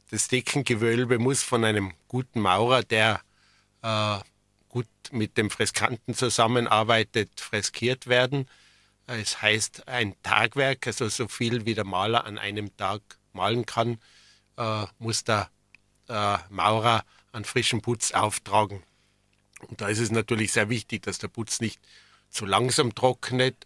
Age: 50-69